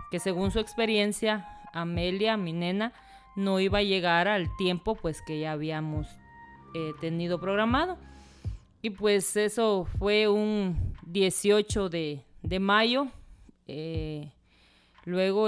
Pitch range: 170-210 Hz